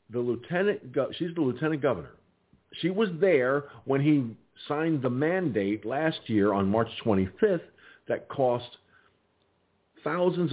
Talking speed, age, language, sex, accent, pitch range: 125 wpm, 50-69, English, male, American, 95-140 Hz